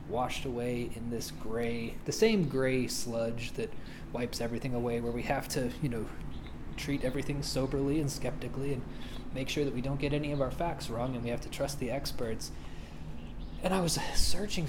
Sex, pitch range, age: male, 120-145 Hz, 20-39